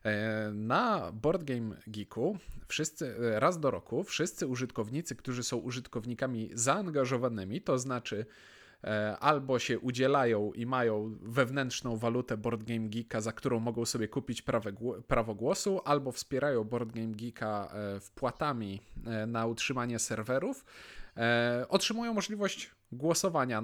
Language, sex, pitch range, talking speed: Polish, male, 115-145 Hz, 105 wpm